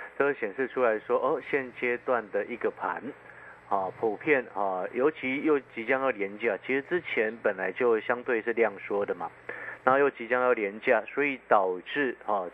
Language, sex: Chinese, male